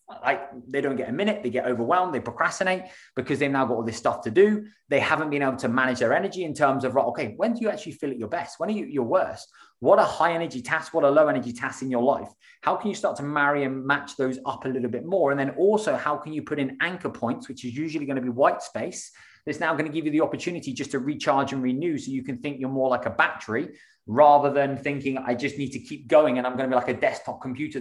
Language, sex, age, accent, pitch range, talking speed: English, male, 20-39, British, 130-155 Hz, 280 wpm